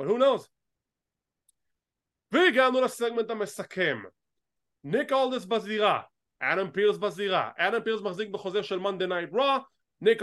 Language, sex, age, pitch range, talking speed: English, male, 20-39, 185-230 Hz, 115 wpm